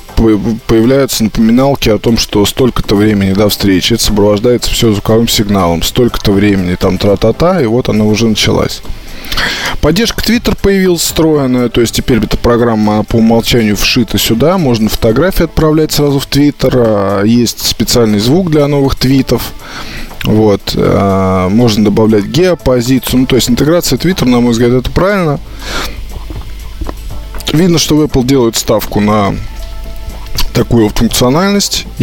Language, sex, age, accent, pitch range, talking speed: Russian, male, 20-39, native, 100-125 Hz, 130 wpm